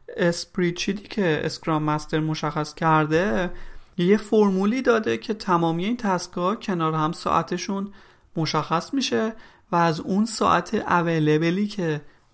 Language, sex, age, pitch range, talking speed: Persian, male, 30-49, 155-195 Hz, 120 wpm